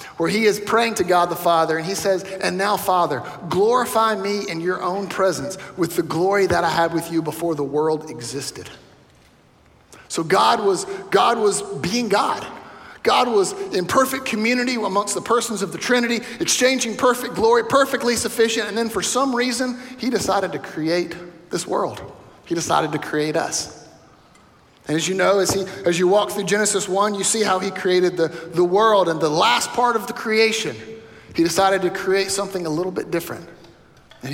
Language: English